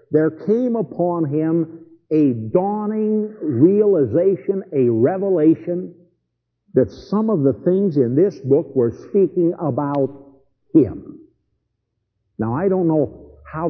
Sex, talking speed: male, 115 wpm